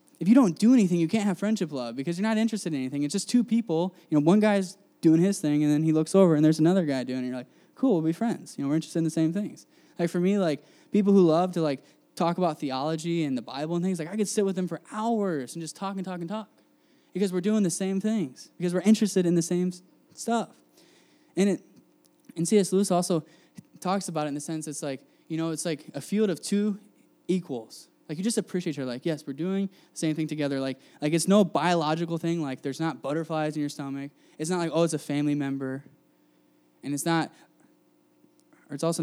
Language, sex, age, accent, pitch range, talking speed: English, male, 10-29, American, 150-185 Hz, 250 wpm